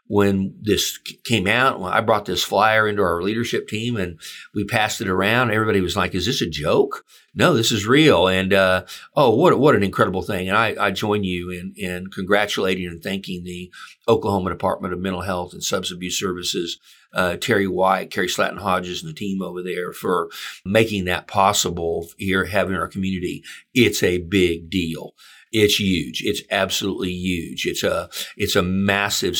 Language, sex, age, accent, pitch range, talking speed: English, male, 50-69, American, 90-100 Hz, 180 wpm